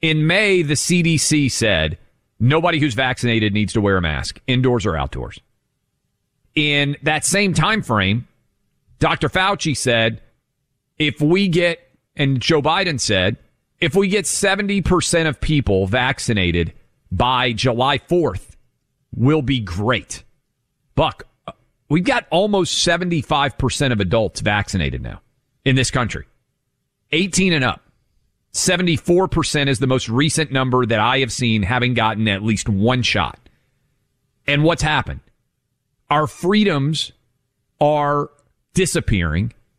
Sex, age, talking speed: male, 40-59, 125 wpm